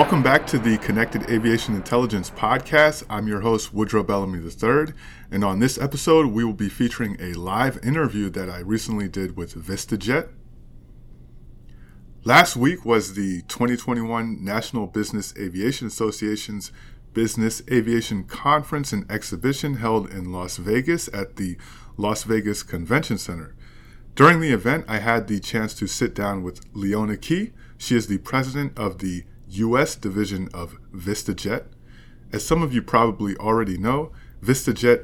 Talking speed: 145 wpm